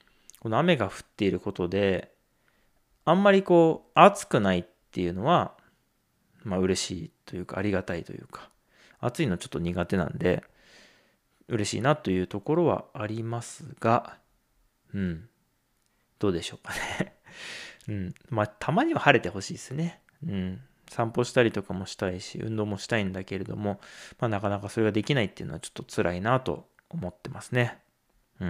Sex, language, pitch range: male, Japanese, 95-150 Hz